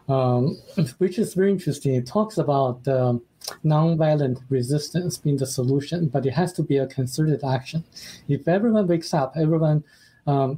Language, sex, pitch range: English, male, 130-160 Hz